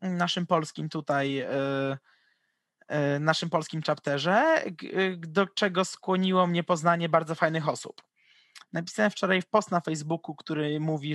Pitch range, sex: 155-185 Hz, male